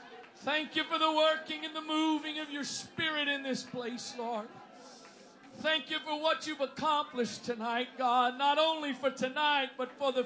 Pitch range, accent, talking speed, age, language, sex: 235-305 Hz, American, 175 wpm, 50-69, English, male